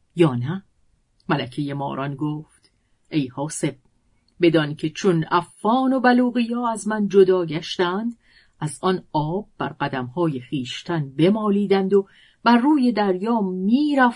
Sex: female